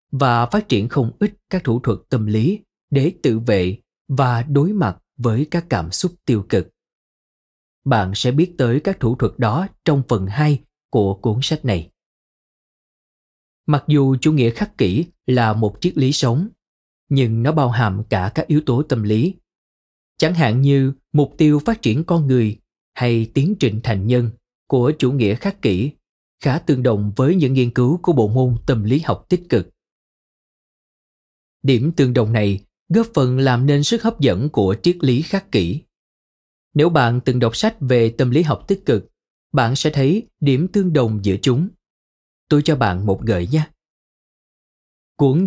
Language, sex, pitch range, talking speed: Vietnamese, male, 110-150 Hz, 175 wpm